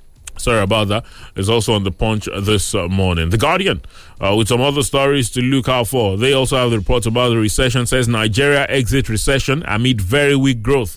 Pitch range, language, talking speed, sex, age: 105-140 Hz, English, 200 wpm, male, 30-49